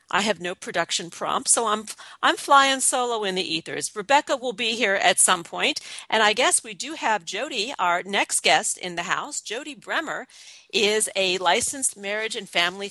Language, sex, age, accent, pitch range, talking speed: English, female, 40-59, American, 170-230 Hz, 190 wpm